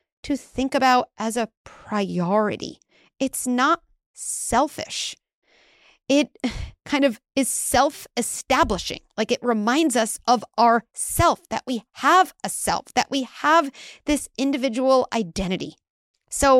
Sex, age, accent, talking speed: female, 30-49, American, 120 wpm